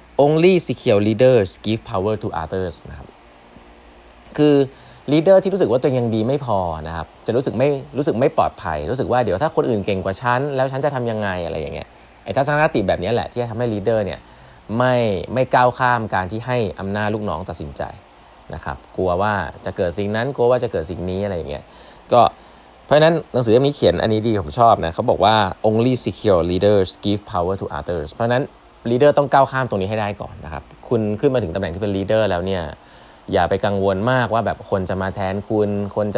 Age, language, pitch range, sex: 20-39, Thai, 95-120 Hz, male